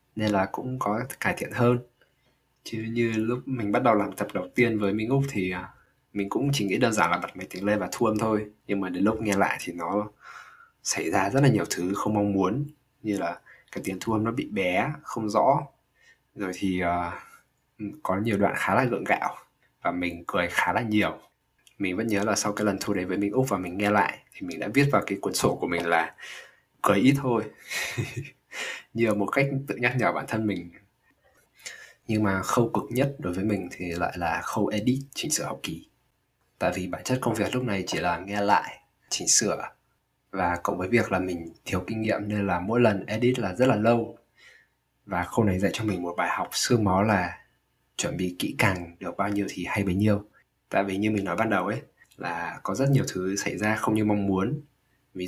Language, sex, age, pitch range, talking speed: Vietnamese, male, 20-39, 95-115 Hz, 230 wpm